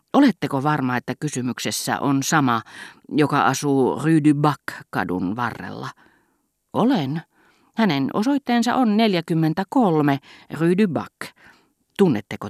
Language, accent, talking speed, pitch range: Finnish, native, 95 wpm, 125-170 Hz